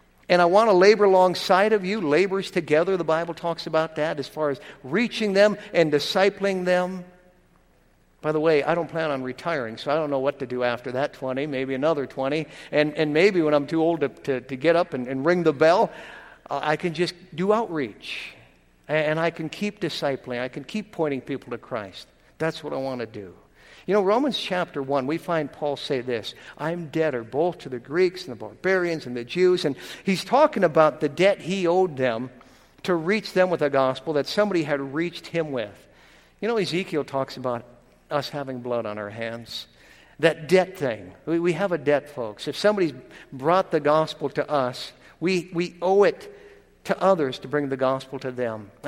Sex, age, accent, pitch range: male, 60-79, American, 135-180 Hz